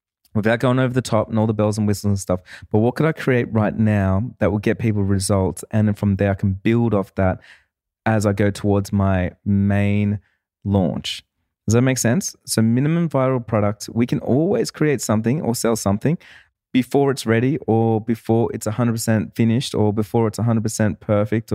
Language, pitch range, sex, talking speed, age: English, 100-120 Hz, male, 190 wpm, 20-39